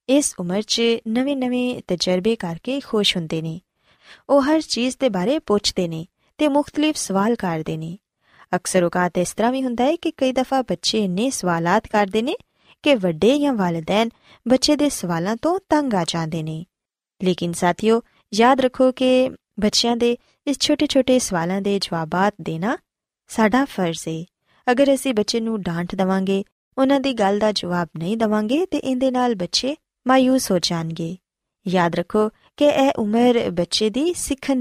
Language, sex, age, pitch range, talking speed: Punjabi, female, 20-39, 180-260 Hz, 145 wpm